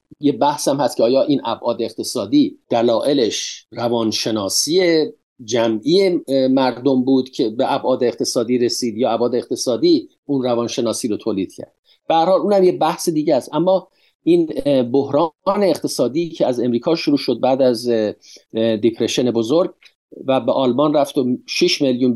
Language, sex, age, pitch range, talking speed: Persian, male, 50-69, 125-185 Hz, 145 wpm